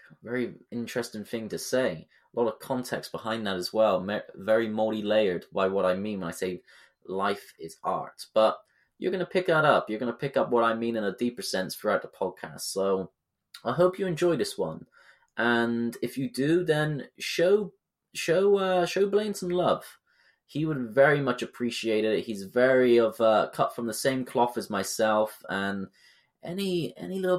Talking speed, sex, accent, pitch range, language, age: 190 wpm, male, British, 110-140 Hz, English, 20-39